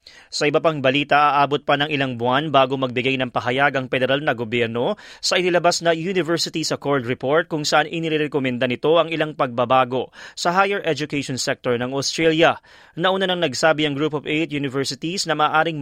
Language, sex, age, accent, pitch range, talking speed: Filipino, male, 20-39, native, 125-160 Hz, 175 wpm